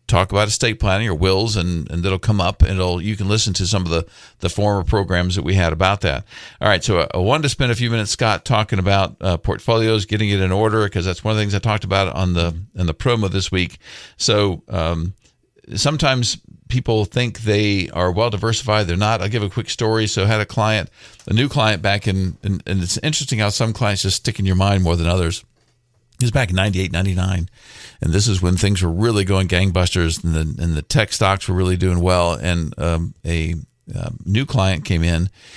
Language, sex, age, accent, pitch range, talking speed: English, male, 50-69, American, 95-115 Hz, 235 wpm